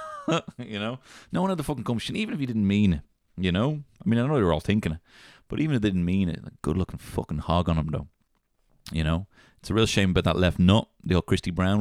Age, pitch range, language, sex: 30-49, 90-125 Hz, English, male